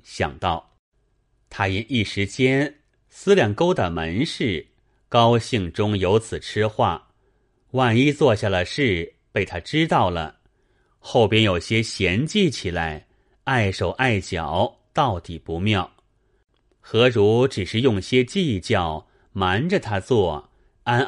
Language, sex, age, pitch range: Chinese, male, 30-49, 95-130 Hz